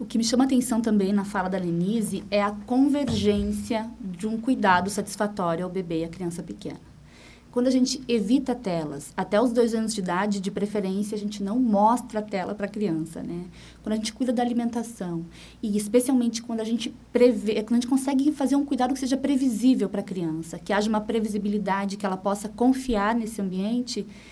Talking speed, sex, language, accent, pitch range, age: 200 wpm, female, Portuguese, Brazilian, 200-250 Hz, 20-39